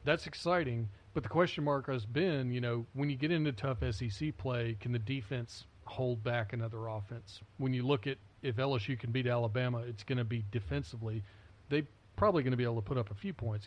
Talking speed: 220 wpm